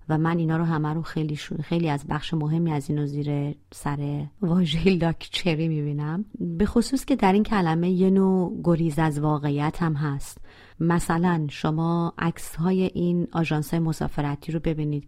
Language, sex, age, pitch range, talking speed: Persian, female, 30-49, 155-210 Hz, 160 wpm